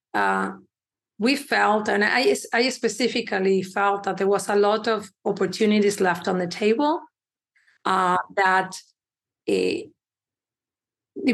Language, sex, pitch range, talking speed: English, female, 195-235 Hz, 115 wpm